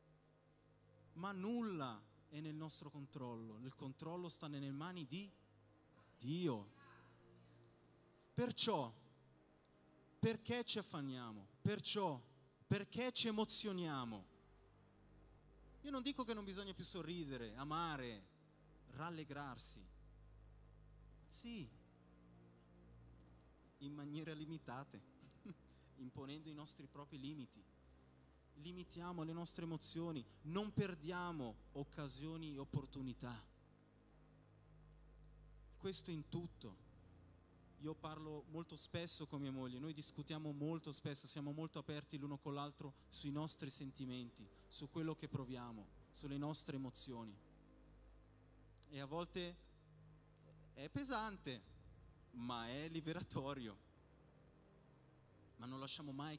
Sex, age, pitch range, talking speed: male, 30-49, 110-155 Hz, 95 wpm